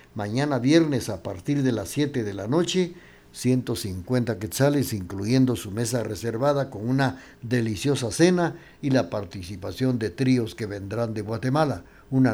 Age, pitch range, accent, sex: 60-79, 105-140 Hz, Mexican, male